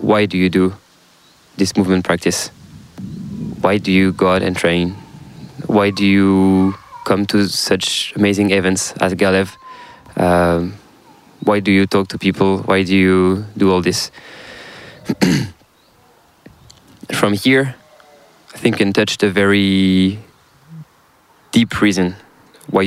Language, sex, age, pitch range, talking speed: English, male, 20-39, 95-105 Hz, 130 wpm